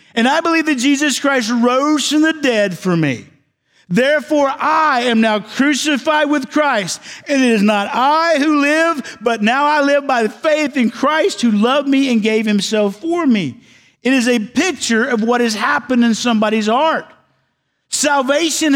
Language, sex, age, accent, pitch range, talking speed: English, male, 50-69, American, 200-275 Hz, 175 wpm